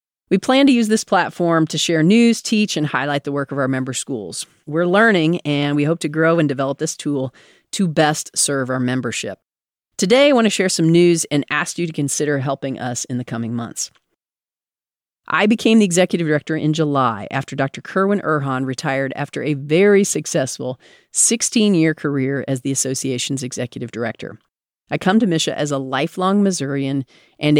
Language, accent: English, American